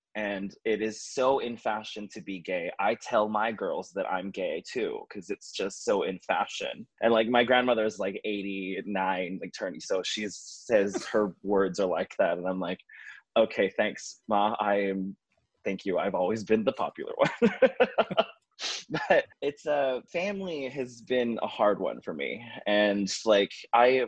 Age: 20-39